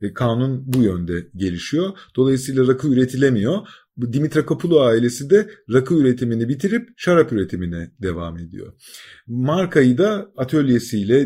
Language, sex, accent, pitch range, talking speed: Turkish, male, native, 105-145 Hz, 115 wpm